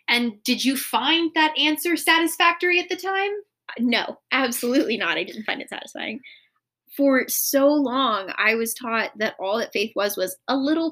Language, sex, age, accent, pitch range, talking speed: English, female, 20-39, American, 220-295 Hz, 175 wpm